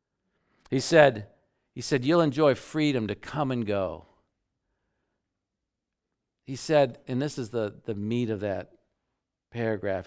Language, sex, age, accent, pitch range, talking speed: English, male, 50-69, American, 110-155 Hz, 130 wpm